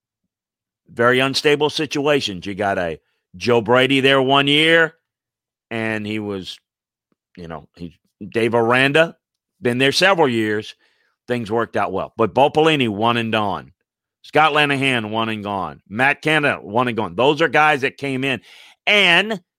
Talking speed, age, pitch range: 145 wpm, 40-59, 115-150 Hz